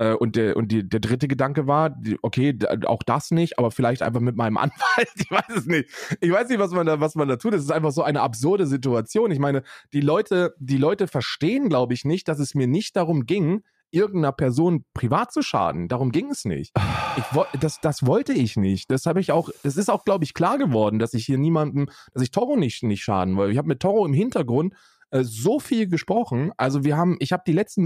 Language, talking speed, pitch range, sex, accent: German, 230 wpm, 130-185 Hz, male, German